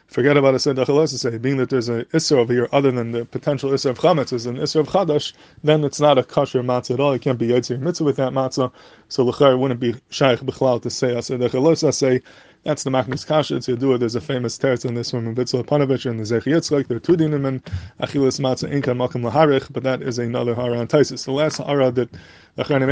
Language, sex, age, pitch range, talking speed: English, male, 20-39, 125-140 Hz, 240 wpm